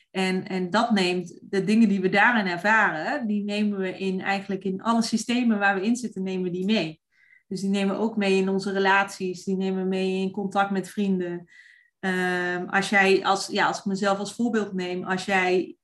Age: 20-39